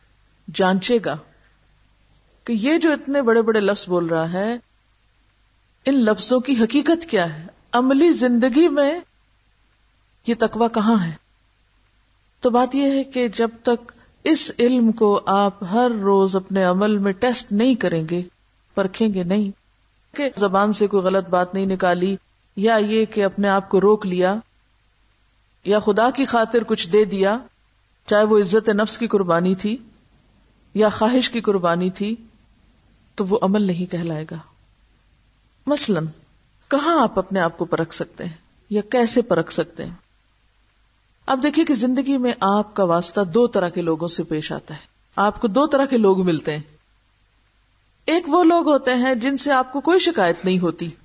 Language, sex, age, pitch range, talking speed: Urdu, female, 50-69, 165-240 Hz, 165 wpm